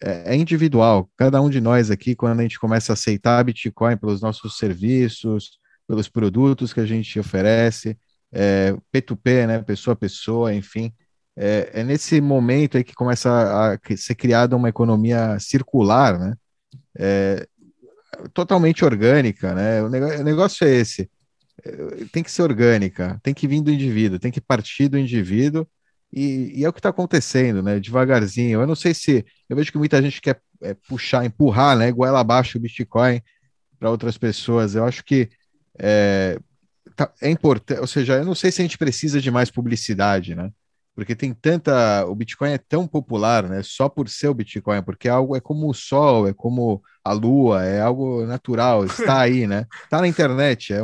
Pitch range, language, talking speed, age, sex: 110-140 Hz, Portuguese, 180 wpm, 30-49, male